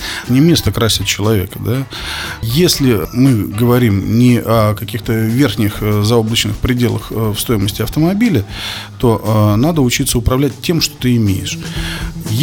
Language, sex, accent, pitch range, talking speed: Russian, male, native, 105-135 Hz, 125 wpm